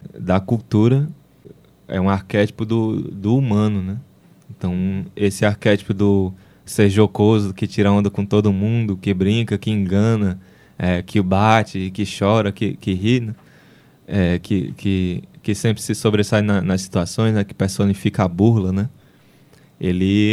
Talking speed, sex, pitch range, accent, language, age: 150 wpm, male, 100-115 Hz, Brazilian, Portuguese, 20-39